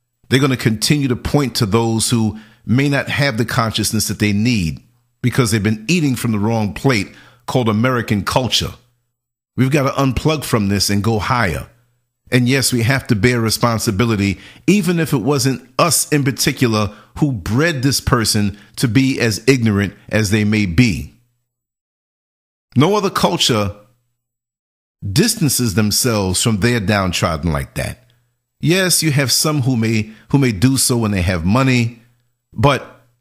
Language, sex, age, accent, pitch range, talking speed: English, male, 50-69, American, 110-135 Hz, 160 wpm